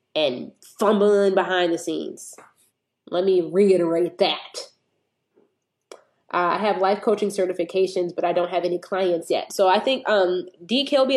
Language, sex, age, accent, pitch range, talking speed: English, female, 20-39, American, 170-200 Hz, 140 wpm